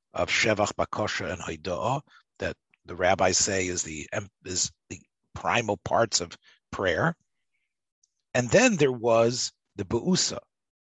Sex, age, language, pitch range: male, 40-59, English, 105-140 Hz